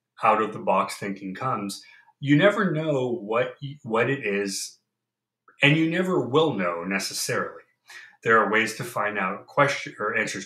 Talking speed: 160 wpm